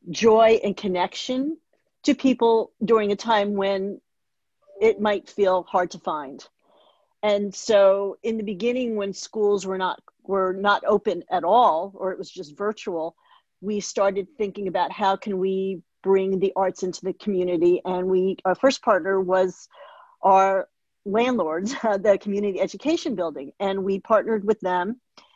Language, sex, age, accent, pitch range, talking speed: English, female, 50-69, American, 185-220 Hz, 150 wpm